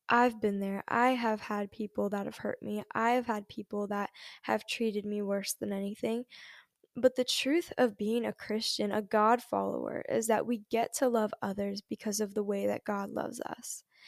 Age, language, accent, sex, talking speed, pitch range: 10-29, English, American, female, 195 wpm, 210-245 Hz